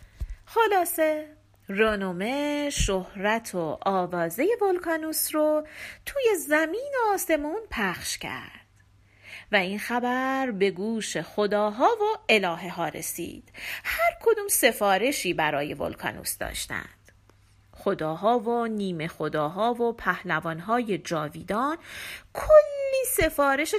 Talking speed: 95 wpm